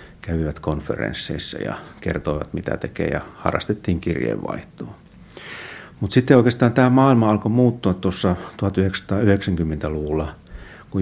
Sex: male